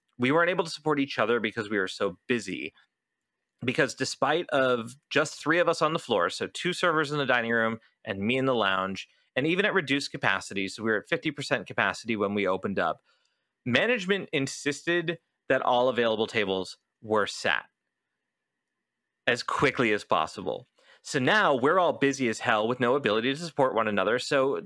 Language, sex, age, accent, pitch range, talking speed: English, male, 30-49, American, 115-155 Hz, 185 wpm